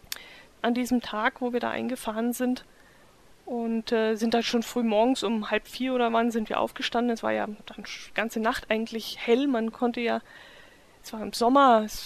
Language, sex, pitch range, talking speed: German, female, 220-250 Hz, 195 wpm